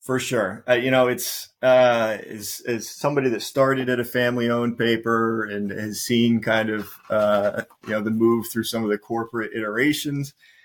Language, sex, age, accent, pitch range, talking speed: English, male, 30-49, American, 105-120 Hz, 185 wpm